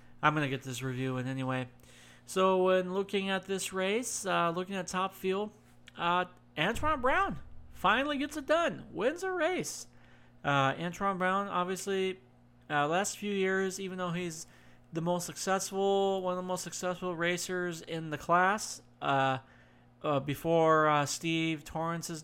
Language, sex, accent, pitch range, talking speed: English, male, American, 145-180 Hz, 155 wpm